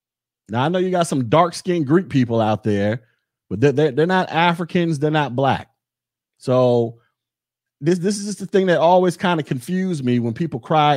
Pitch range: 120-175 Hz